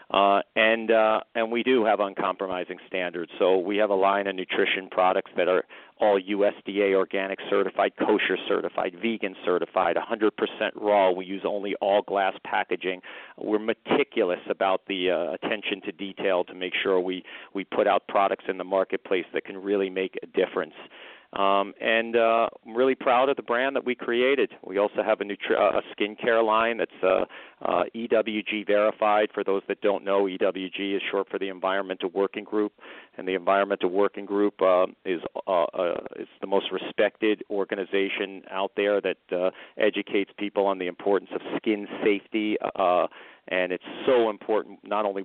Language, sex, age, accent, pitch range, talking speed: English, male, 40-59, American, 95-105 Hz, 165 wpm